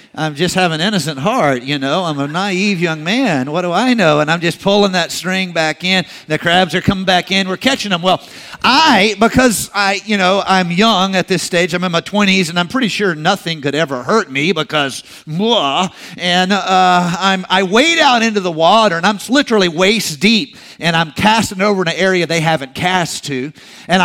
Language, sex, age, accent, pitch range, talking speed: English, male, 50-69, American, 160-210 Hz, 210 wpm